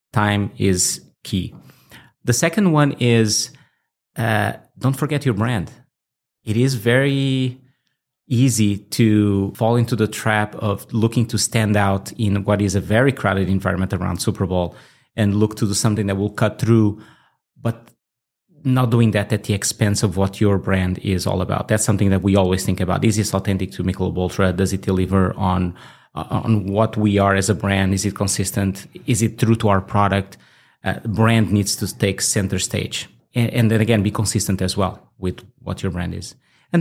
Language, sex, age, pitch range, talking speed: English, male, 30-49, 100-125 Hz, 185 wpm